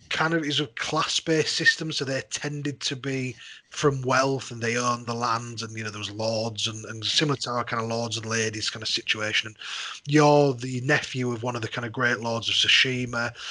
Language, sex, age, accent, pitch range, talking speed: English, male, 30-49, British, 120-145 Hz, 225 wpm